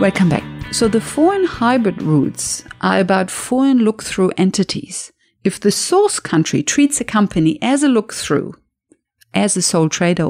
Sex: female